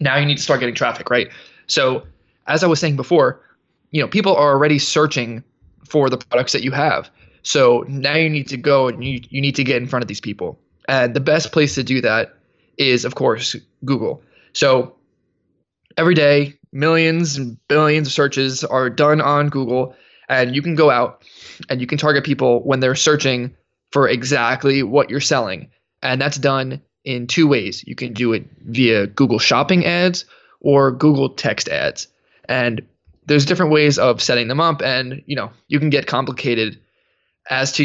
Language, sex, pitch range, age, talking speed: English, male, 130-150 Hz, 20-39, 190 wpm